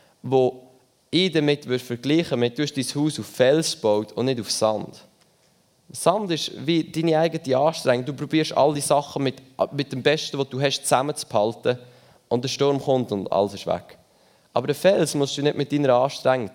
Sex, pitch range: male, 105-140 Hz